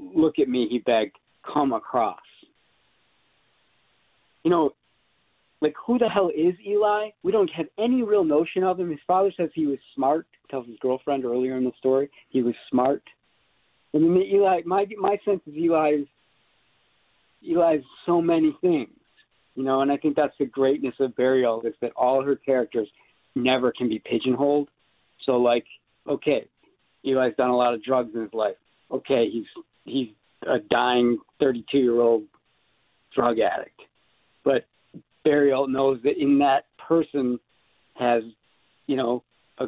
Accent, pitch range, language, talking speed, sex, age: American, 130-185 Hz, English, 160 wpm, male, 40-59